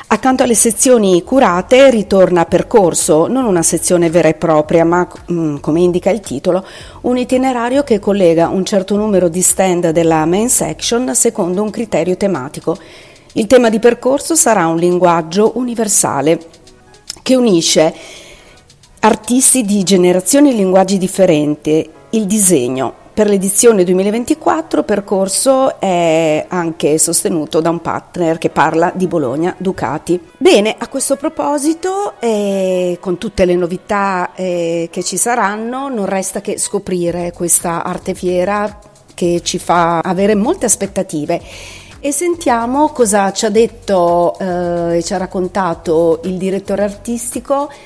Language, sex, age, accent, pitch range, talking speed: Italian, female, 40-59, native, 170-230 Hz, 135 wpm